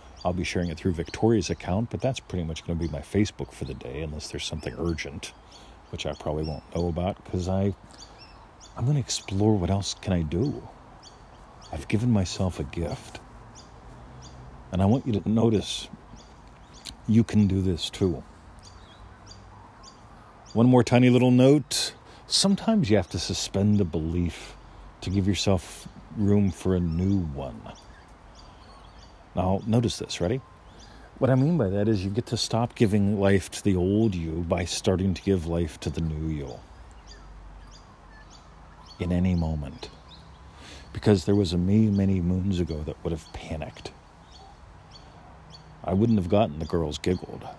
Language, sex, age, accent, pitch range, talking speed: English, male, 50-69, American, 85-105 Hz, 160 wpm